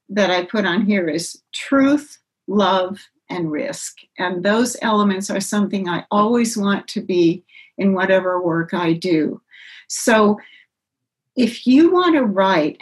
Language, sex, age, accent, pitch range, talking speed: English, female, 60-79, American, 195-265 Hz, 145 wpm